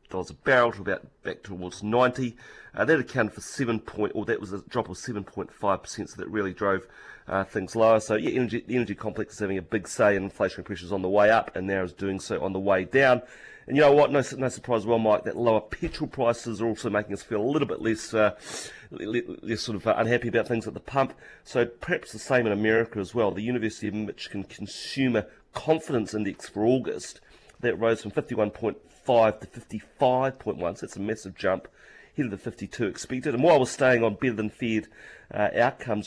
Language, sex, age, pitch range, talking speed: English, male, 30-49, 100-125 Hz, 215 wpm